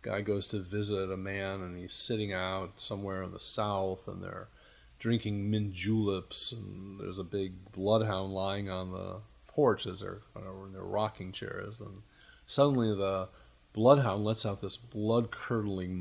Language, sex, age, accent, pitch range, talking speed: English, male, 40-59, American, 100-135 Hz, 165 wpm